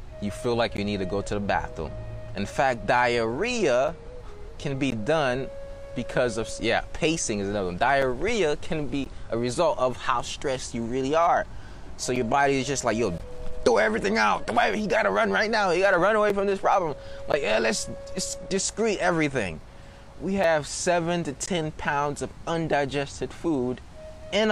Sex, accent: male, American